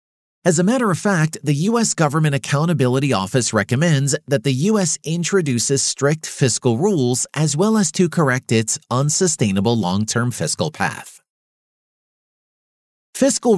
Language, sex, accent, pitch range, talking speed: English, male, American, 120-175 Hz, 130 wpm